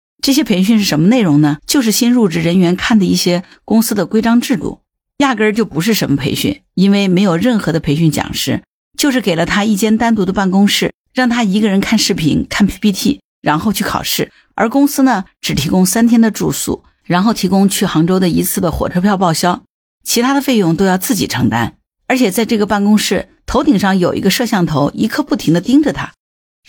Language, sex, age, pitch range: Chinese, female, 50-69, 175-235 Hz